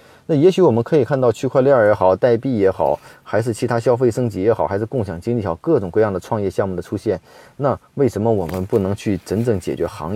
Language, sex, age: Chinese, male, 30-49